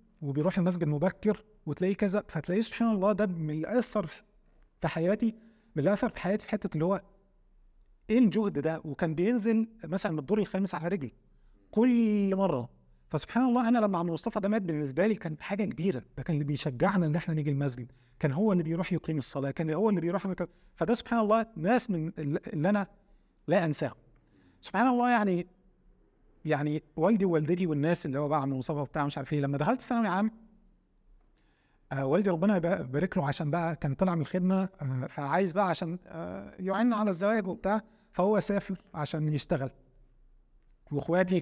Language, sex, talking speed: Arabic, male, 170 wpm